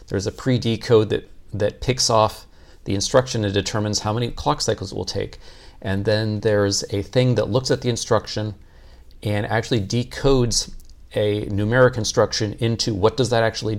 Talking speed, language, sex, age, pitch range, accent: 170 wpm, English, male, 40-59, 95-110 Hz, American